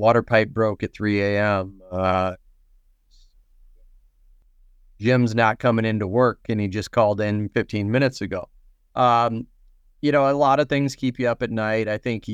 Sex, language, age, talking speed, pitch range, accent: male, English, 30-49, 170 wpm, 95-115 Hz, American